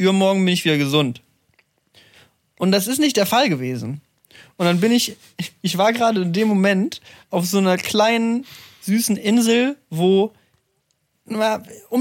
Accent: German